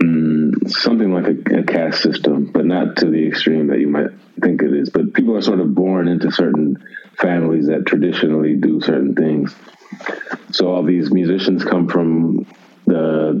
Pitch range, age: 80-90 Hz, 30-49